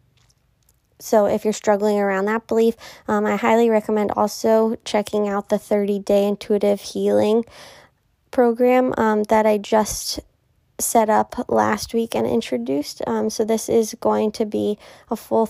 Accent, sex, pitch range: American, female, 195-220 Hz